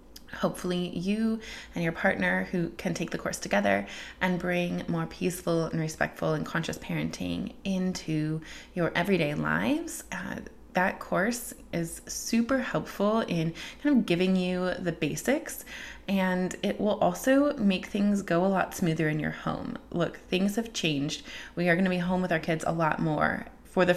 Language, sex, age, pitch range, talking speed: English, female, 20-39, 165-195 Hz, 170 wpm